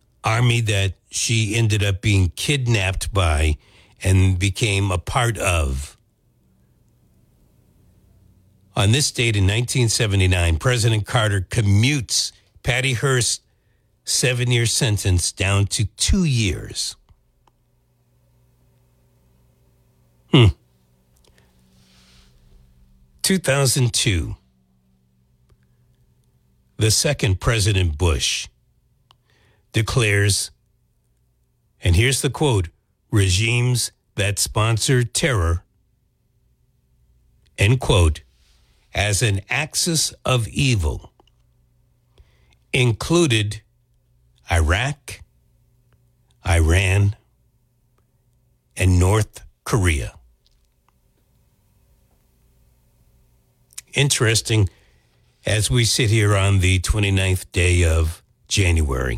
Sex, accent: male, American